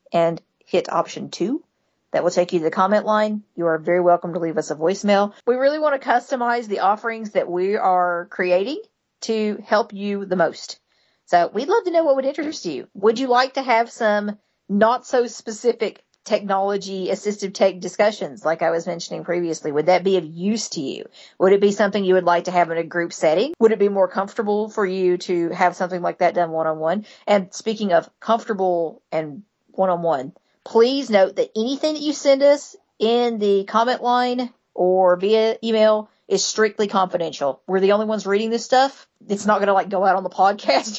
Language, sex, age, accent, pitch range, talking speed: English, female, 40-59, American, 180-235 Hz, 205 wpm